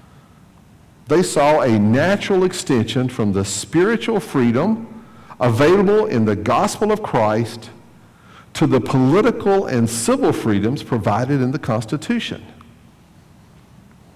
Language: English